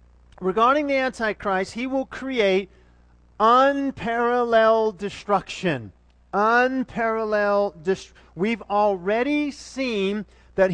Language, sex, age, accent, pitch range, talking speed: English, male, 40-59, American, 185-230 Hz, 80 wpm